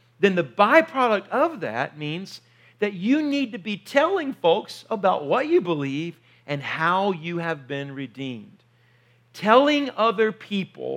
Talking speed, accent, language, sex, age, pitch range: 140 wpm, American, English, male, 50-69, 155-225 Hz